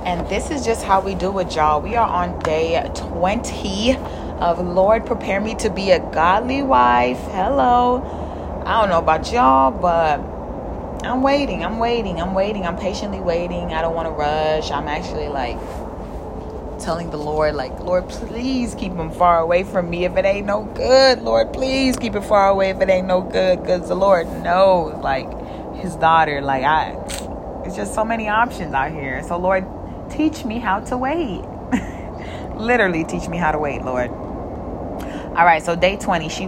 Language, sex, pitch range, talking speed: English, female, 145-195 Hz, 185 wpm